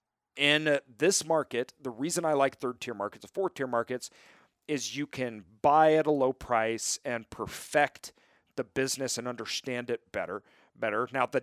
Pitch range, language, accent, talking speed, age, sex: 115-145 Hz, English, American, 165 wpm, 40-59, male